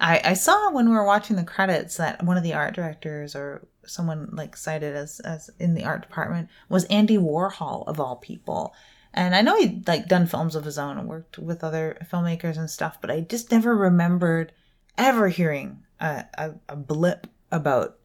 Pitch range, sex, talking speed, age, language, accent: 150-190 Hz, female, 195 wpm, 30-49, English, American